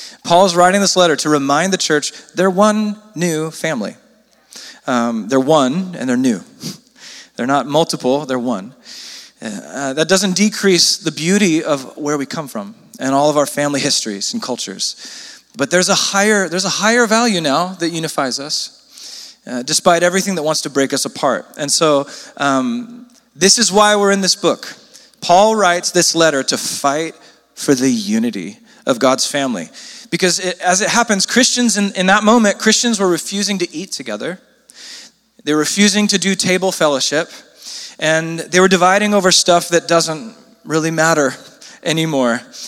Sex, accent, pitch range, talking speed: male, American, 155-205 Hz, 165 wpm